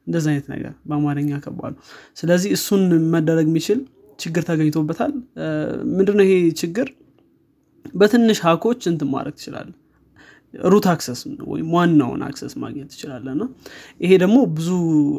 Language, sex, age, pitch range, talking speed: Amharic, male, 20-39, 150-175 Hz, 110 wpm